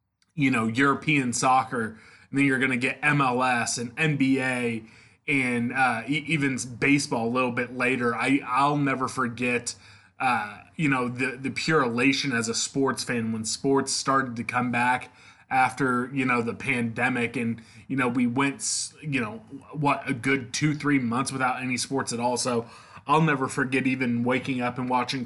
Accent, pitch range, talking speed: American, 120-135 Hz, 180 wpm